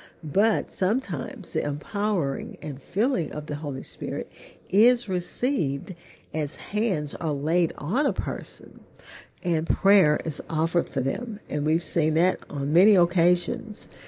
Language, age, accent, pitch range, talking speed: English, 50-69, American, 150-190 Hz, 135 wpm